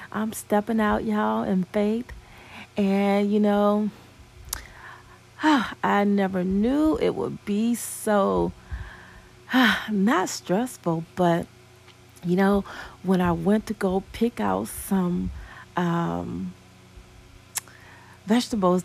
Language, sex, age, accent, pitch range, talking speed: English, female, 40-59, American, 170-220 Hz, 100 wpm